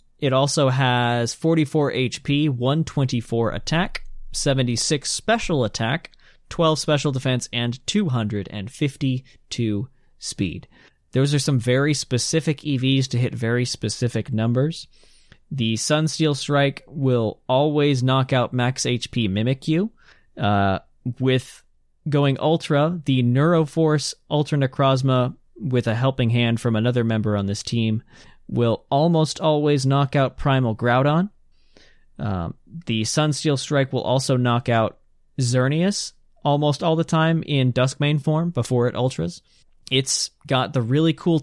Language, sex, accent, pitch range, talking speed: English, male, American, 115-145 Hz, 125 wpm